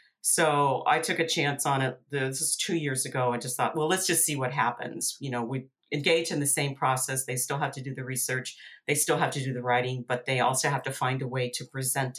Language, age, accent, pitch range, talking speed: English, 50-69, American, 130-165 Hz, 260 wpm